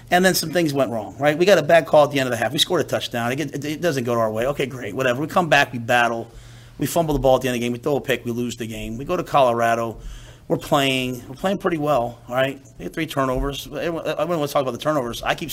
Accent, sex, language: American, male, English